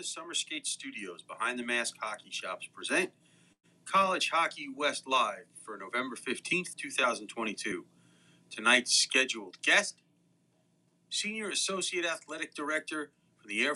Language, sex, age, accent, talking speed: English, male, 40-59, American, 120 wpm